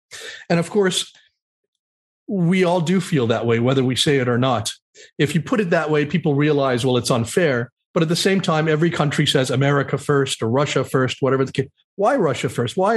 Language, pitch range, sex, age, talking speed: English, 135-170 Hz, male, 40-59, 215 wpm